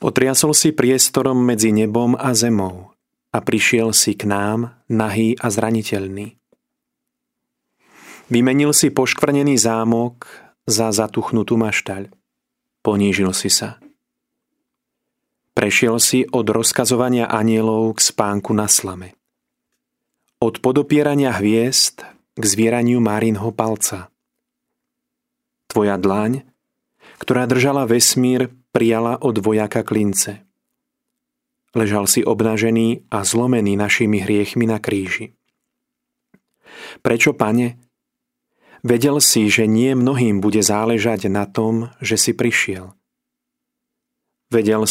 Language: Slovak